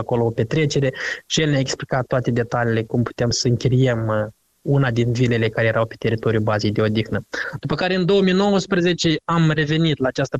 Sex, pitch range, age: male, 120-135 Hz, 20-39